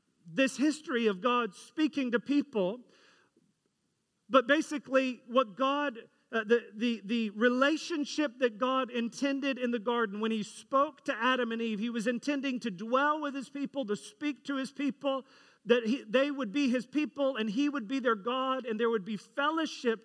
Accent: American